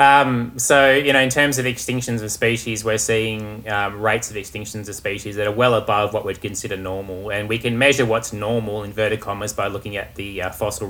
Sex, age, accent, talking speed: male, 20-39, Australian, 220 wpm